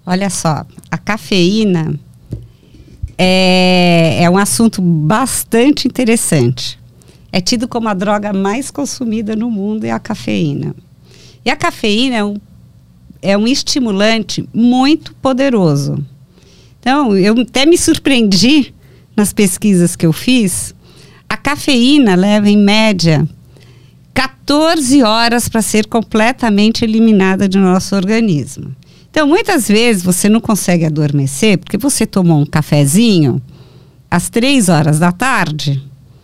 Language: Portuguese